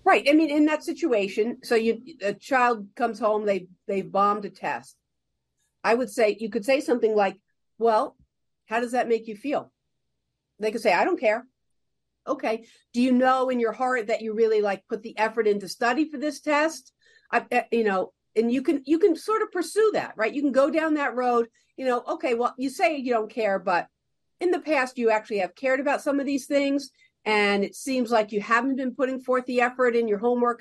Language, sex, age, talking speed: English, female, 50-69, 220 wpm